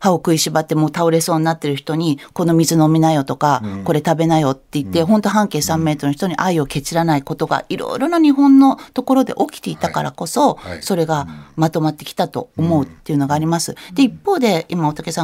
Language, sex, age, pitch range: Japanese, female, 40-59, 150-255 Hz